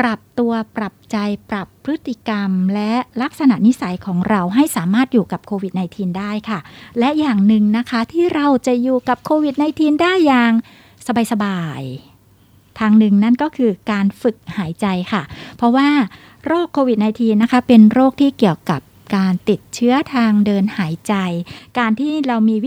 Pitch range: 200-255 Hz